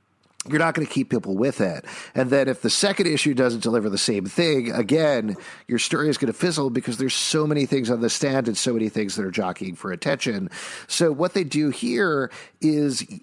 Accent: American